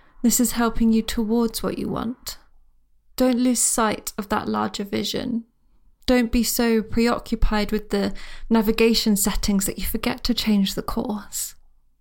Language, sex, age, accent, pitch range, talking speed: English, female, 20-39, British, 210-245 Hz, 150 wpm